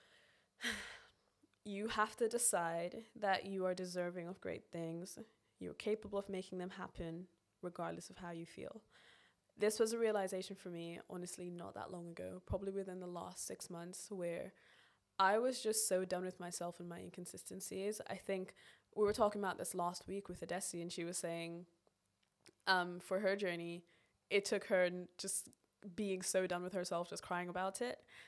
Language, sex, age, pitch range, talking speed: English, female, 20-39, 180-205 Hz, 175 wpm